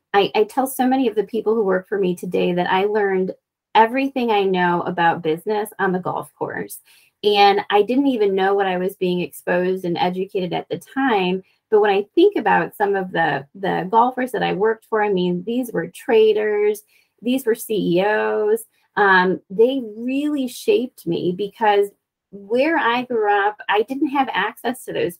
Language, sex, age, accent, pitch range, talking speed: English, female, 20-39, American, 185-245 Hz, 185 wpm